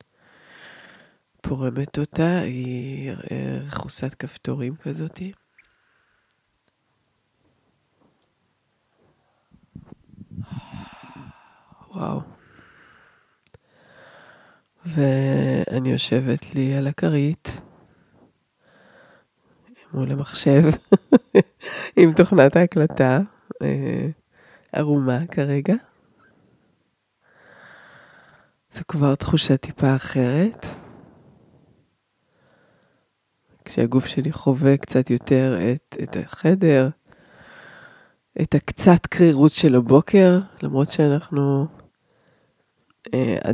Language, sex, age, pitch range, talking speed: Hebrew, female, 20-39, 130-160 Hz, 55 wpm